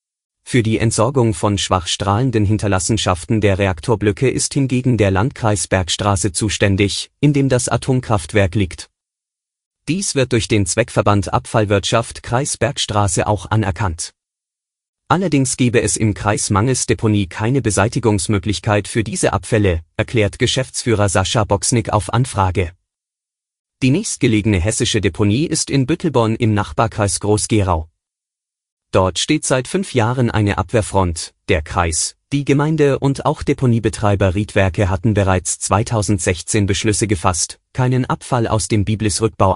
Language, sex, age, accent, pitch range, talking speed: German, male, 30-49, German, 100-125 Hz, 125 wpm